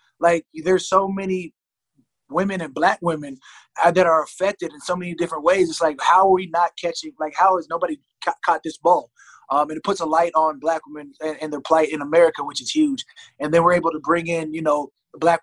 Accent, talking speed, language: American, 235 wpm, English